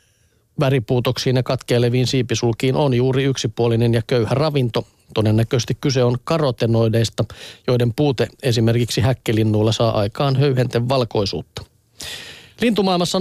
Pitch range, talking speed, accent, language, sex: 120-145 Hz, 105 wpm, native, Finnish, male